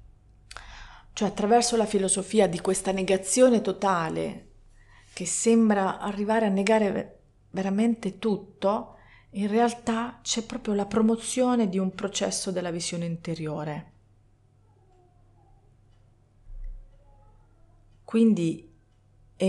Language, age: Italian, 40-59